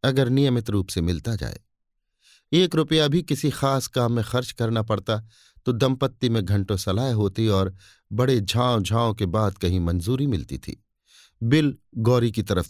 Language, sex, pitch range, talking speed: Hindi, male, 100-130 Hz, 170 wpm